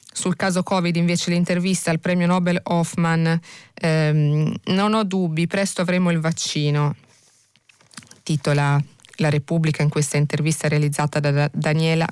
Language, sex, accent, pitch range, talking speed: Italian, female, native, 155-180 Hz, 130 wpm